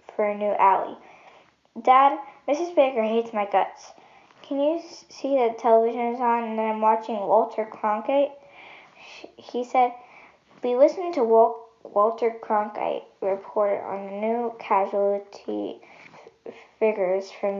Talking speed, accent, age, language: 135 wpm, American, 10-29, English